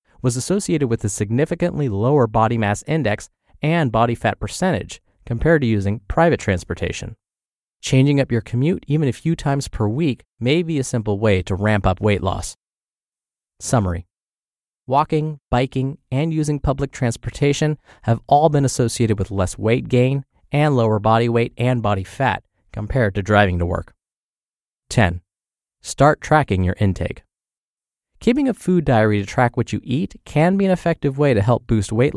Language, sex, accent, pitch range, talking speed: English, male, American, 105-140 Hz, 165 wpm